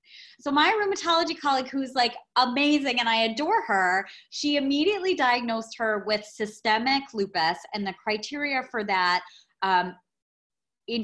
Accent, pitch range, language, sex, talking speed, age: American, 200-275 Hz, English, female, 135 wpm, 30-49